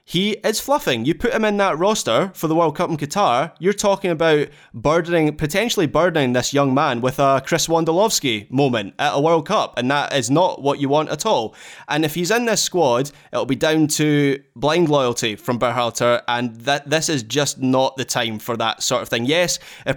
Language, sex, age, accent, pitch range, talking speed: English, male, 20-39, British, 125-155 Hz, 215 wpm